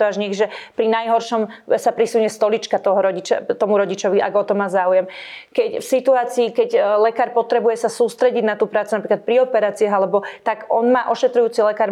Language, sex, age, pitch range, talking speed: Slovak, female, 30-49, 215-255 Hz, 180 wpm